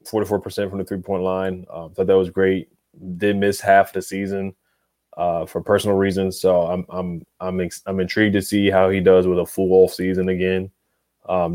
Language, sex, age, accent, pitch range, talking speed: English, male, 20-39, American, 95-105 Hz, 205 wpm